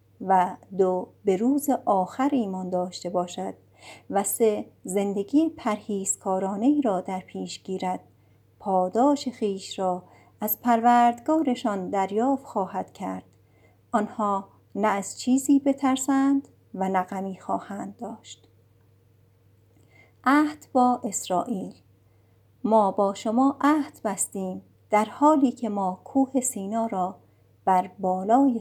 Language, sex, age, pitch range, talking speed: Persian, female, 50-69, 185-240 Hz, 105 wpm